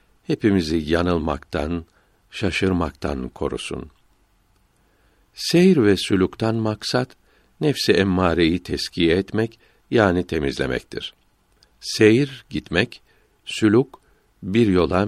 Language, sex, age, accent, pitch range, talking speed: Turkish, male, 60-79, native, 85-105 Hz, 75 wpm